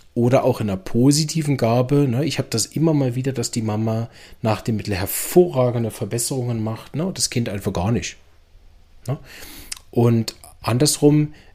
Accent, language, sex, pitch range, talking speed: German, German, male, 105-125 Hz, 150 wpm